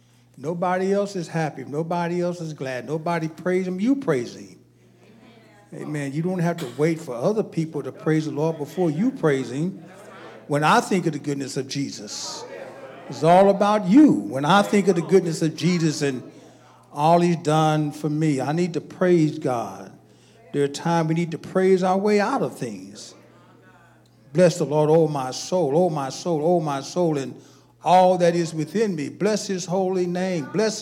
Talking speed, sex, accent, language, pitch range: 190 wpm, male, American, English, 150-190 Hz